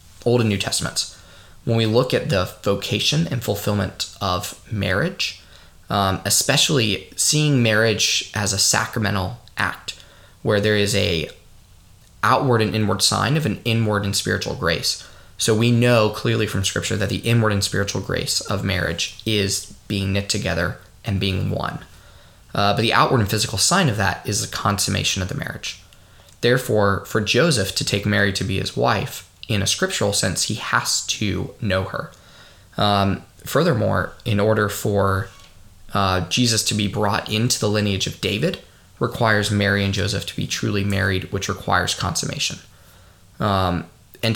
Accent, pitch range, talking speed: American, 95-115 Hz, 160 wpm